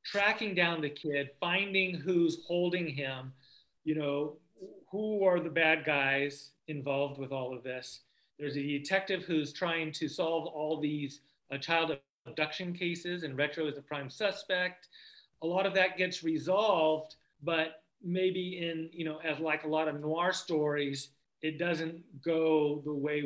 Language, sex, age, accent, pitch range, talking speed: English, male, 40-59, American, 145-175 Hz, 160 wpm